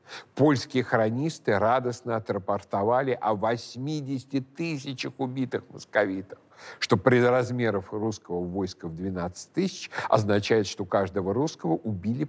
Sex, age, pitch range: male, 60-79, 105-140 Hz